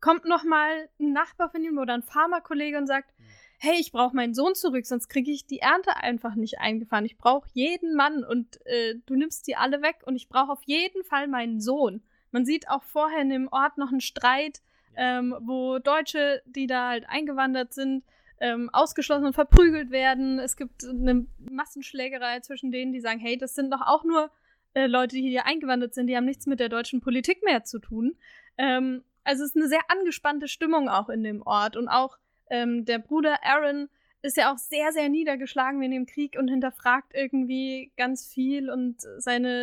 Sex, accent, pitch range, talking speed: female, German, 250-300 Hz, 200 wpm